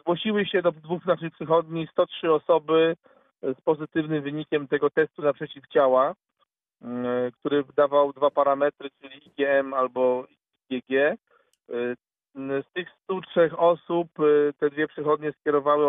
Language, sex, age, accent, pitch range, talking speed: Polish, male, 40-59, native, 135-155 Hz, 120 wpm